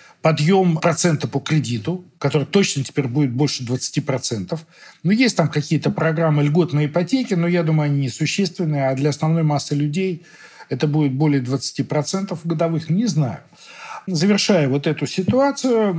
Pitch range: 140-180 Hz